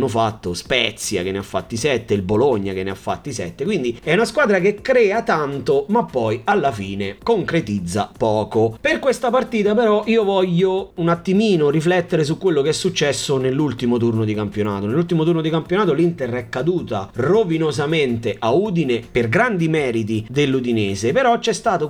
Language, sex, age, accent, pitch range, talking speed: Italian, male, 30-49, native, 115-165 Hz, 170 wpm